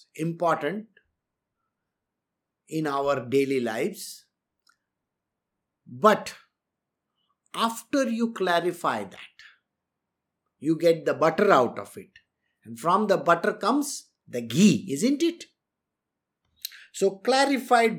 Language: English